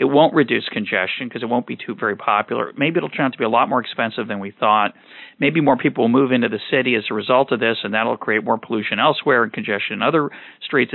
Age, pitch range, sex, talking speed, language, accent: 40-59, 115-170 Hz, male, 275 wpm, English, American